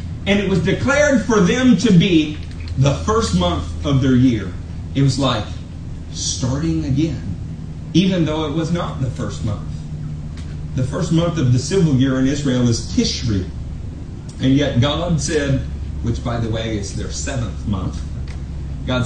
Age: 40-59